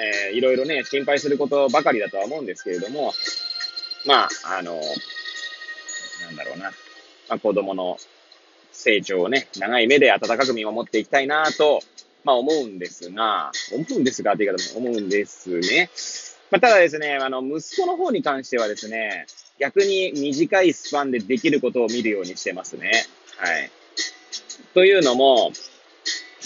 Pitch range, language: 115-185 Hz, Japanese